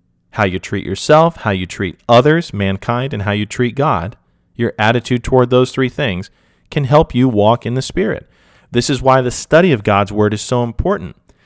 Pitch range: 100-130 Hz